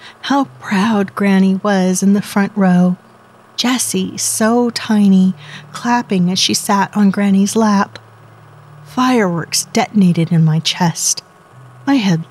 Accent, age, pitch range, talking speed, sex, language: American, 40-59, 160-200 Hz, 120 wpm, female, English